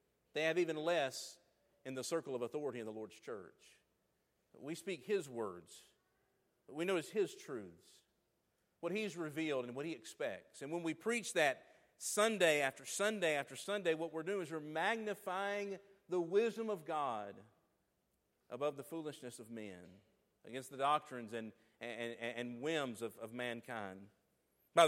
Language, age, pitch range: English, 50-69, 125-170 Hz